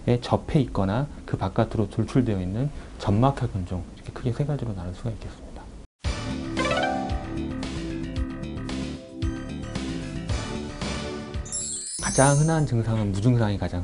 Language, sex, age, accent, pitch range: Korean, male, 30-49, native, 85-115 Hz